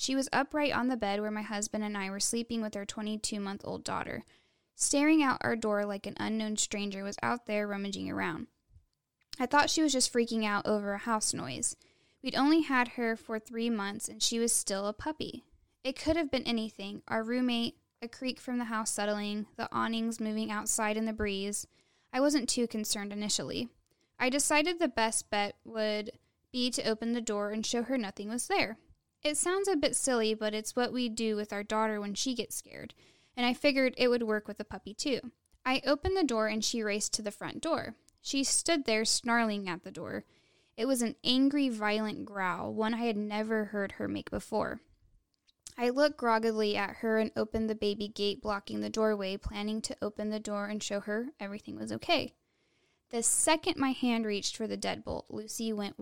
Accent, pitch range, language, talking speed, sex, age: American, 210-250 Hz, English, 200 wpm, female, 10-29